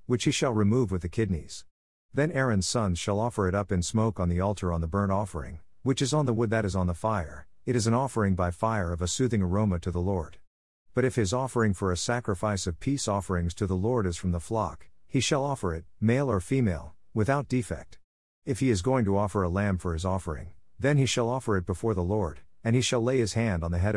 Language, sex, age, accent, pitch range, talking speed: English, male, 50-69, American, 90-115 Hz, 250 wpm